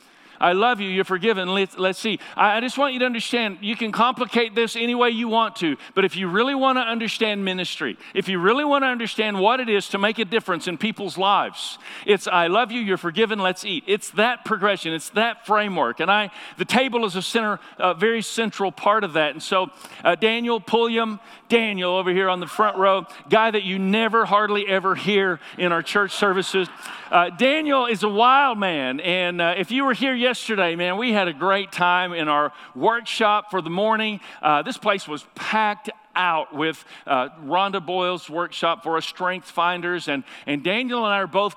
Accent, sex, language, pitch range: American, male, English, 175-225 Hz